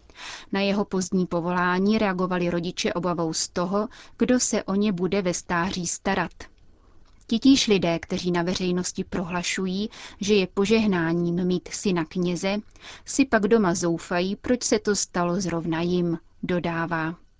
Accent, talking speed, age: native, 140 wpm, 30-49